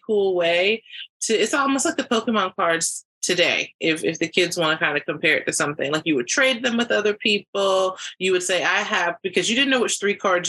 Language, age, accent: English, 30-49, American